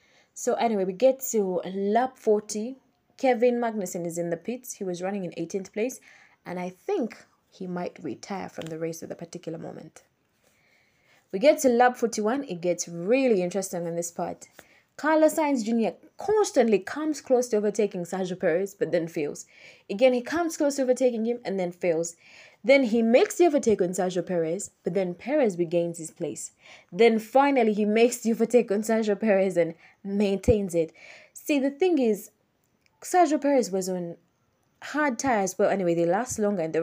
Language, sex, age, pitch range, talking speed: English, female, 20-39, 175-245 Hz, 180 wpm